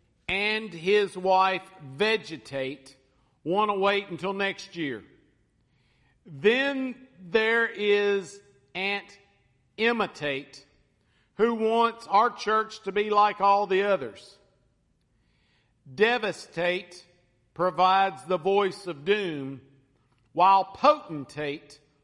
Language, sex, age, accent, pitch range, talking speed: English, male, 50-69, American, 150-205 Hz, 90 wpm